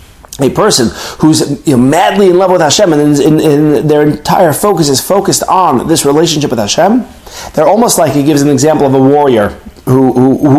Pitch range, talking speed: 130-185 Hz, 200 wpm